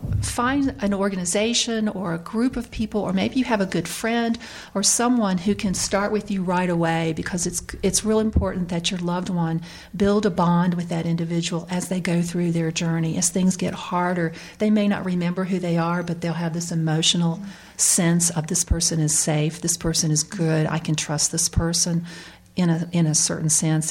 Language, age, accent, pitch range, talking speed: English, 40-59, American, 160-185 Hz, 205 wpm